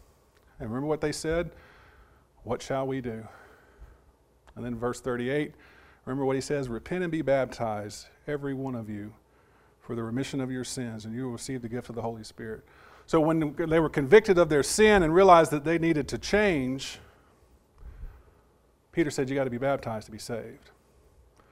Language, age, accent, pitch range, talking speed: English, 40-59, American, 110-165 Hz, 185 wpm